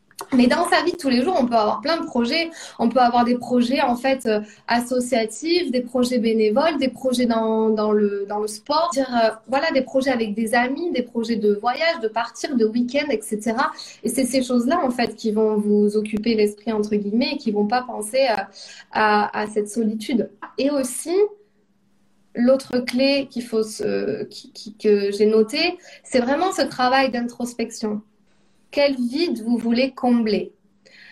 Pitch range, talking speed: 220-275 Hz, 185 wpm